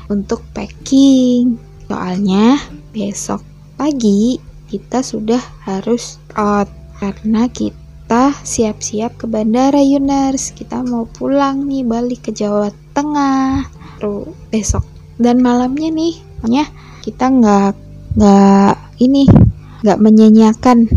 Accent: native